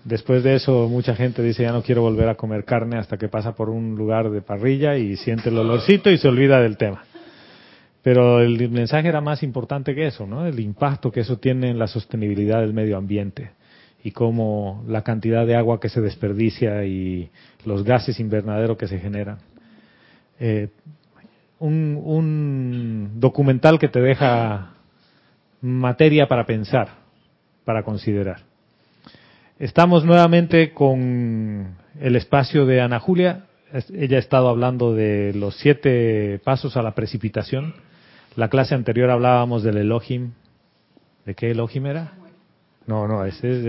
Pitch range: 110-145 Hz